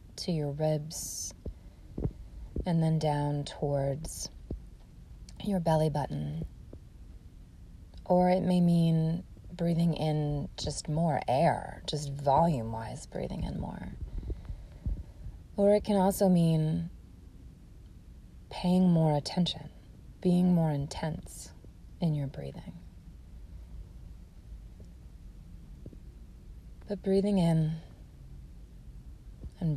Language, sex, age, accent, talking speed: English, female, 30-49, American, 85 wpm